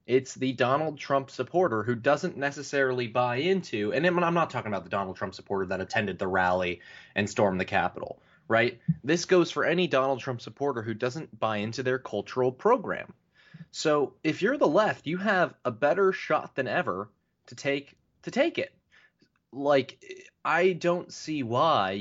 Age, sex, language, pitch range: 20-39, male, English, 105-135 Hz